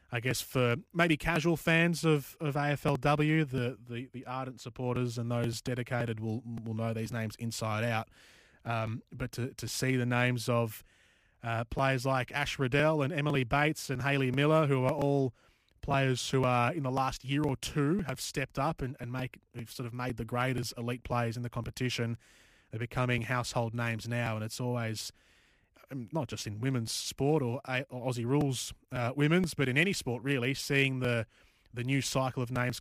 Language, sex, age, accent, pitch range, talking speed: English, male, 20-39, Australian, 115-140 Hz, 185 wpm